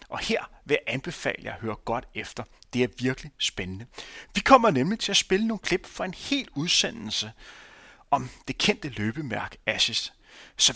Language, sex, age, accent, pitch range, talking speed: Danish, male, 30-49, native, 125-170 Hz, 180 wpm